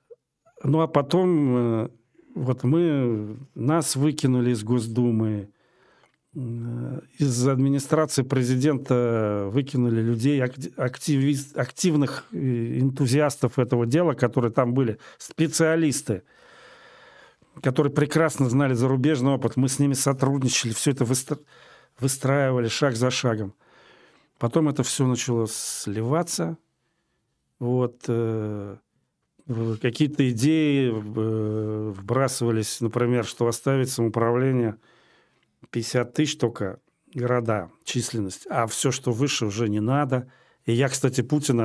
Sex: male